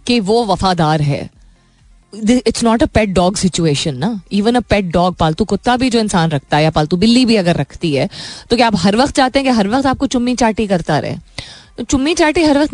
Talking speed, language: 225 wpm, Hindi